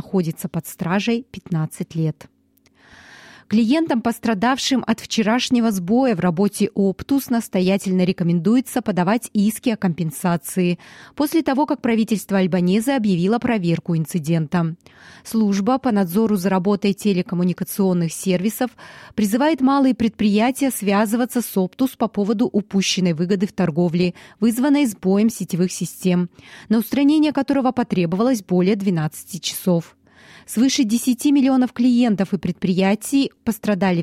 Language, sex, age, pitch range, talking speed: Russian, female, 30-49, 185-240 Hz, 115 wpm